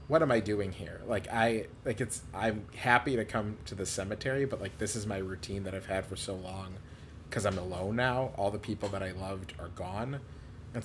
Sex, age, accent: male, 30-49, American